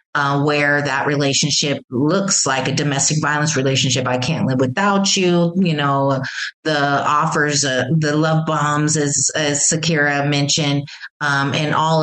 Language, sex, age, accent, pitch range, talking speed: English, female, 30-49, American, 130-150 Hz, 150 wpm